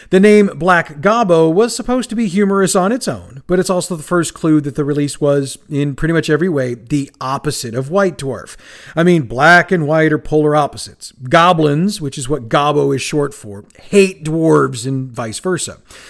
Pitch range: 145-195 Hz